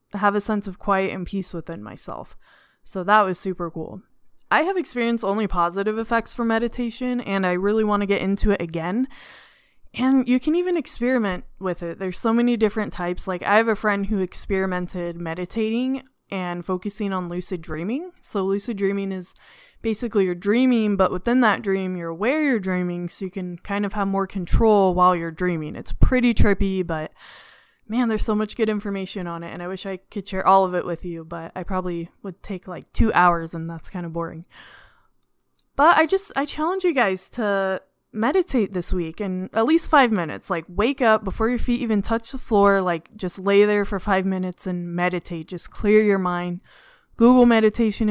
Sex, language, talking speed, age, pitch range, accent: female, English, 200 wpm, 20-39, 180-225 Hz, American